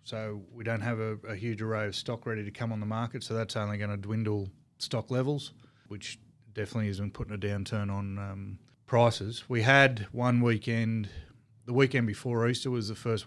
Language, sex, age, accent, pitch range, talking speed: English, male, 30-49, Australian, 105-120 Hz, 200 wpm